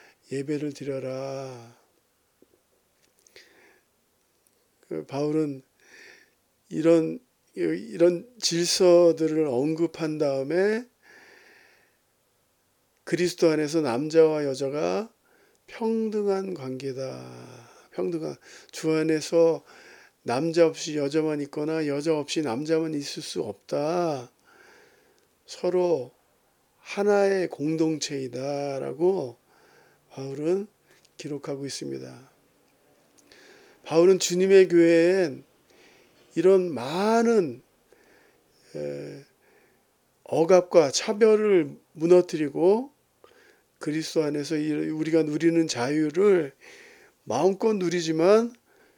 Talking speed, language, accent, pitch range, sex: 60 wpm, Portuguese, Korean, 145-200 Hz, male